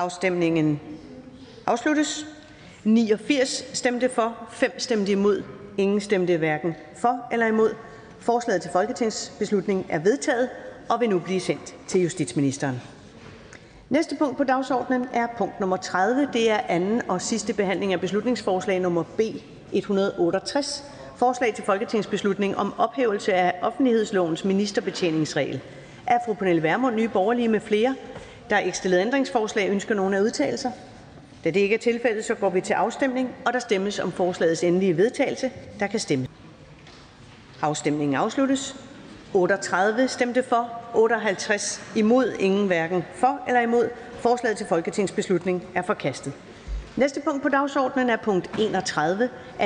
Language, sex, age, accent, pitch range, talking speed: Danish, female, 40-59, native, 185-245 Hz, 135 wpm